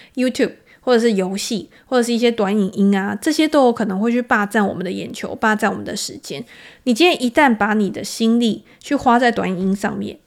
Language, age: Chinese, 20-39